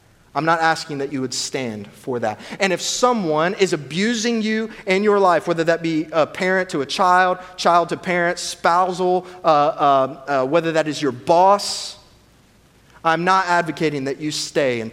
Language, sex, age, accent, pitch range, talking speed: English, male, 30-49, American, 130-180 Hz, 180 wpm